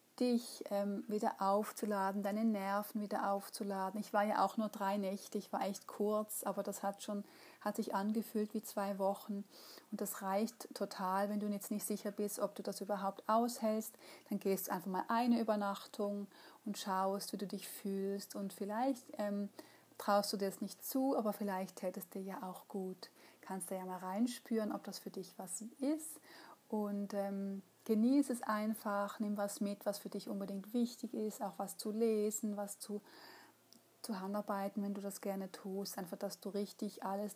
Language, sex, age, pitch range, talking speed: German, female, 30-49, 195-215 Hz, 185 wpm